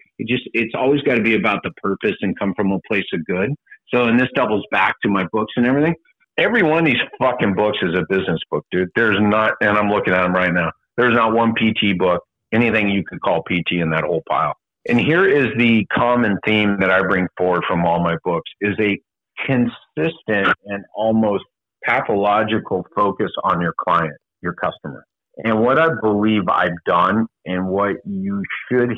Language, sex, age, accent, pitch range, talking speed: English, male, 50-69, American, 95-120 Hz, 200 wpm